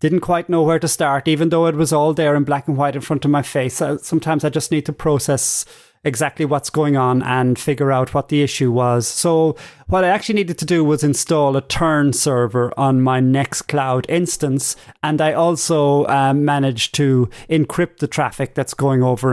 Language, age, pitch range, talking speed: English, 30-49, 135-160 Hz, 210 wpm